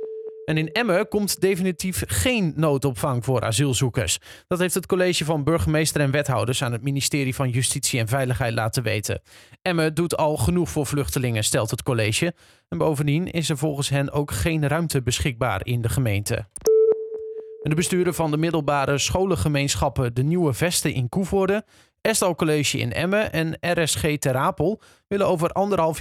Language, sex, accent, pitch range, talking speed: Dutch, male, Dutch, 135-175 Hz, 160 wpm